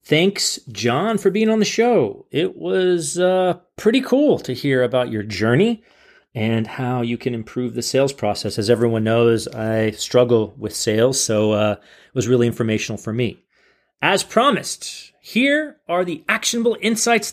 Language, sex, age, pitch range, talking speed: English, male, 30-49, 120-185 Hz, 165 wpm